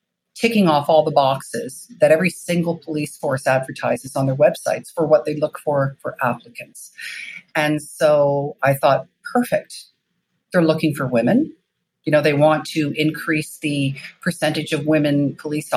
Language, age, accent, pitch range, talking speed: English, 50-69, American, 145-180 Hz, 155 wpm